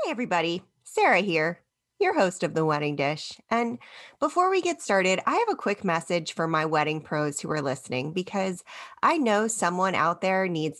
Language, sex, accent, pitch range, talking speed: English, female, American, 160-225 Hz, 190 wpm